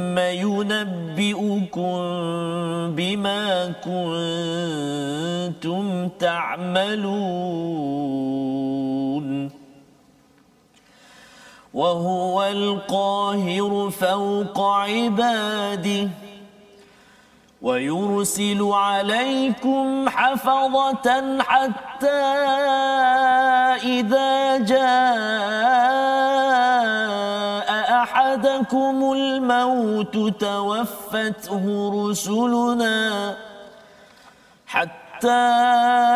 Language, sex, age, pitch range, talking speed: Malayalam, male, 40-59, 200-250 Hz, 30 wpm